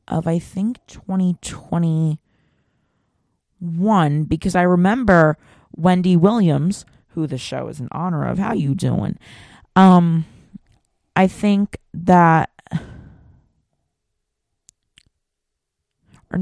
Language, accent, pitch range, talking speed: English, American, 155-185 Hz, 90 wpm